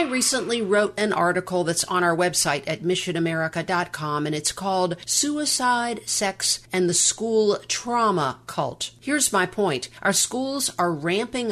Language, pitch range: English, 165-205 Hz